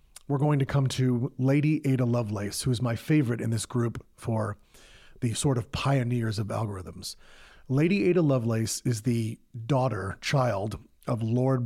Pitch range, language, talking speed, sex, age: 115-140 Hz, English, 160 wpm, male, 40-59